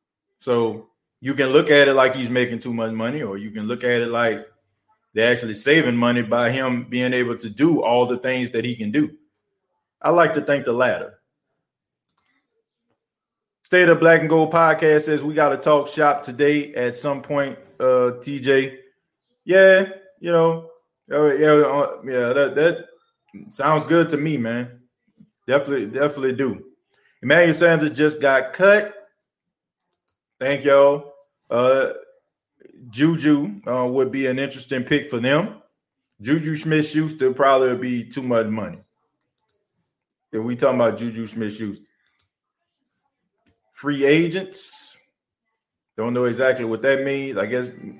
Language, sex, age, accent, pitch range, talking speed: English, male, 20-39, American, 120-155 Hz, 150 wpm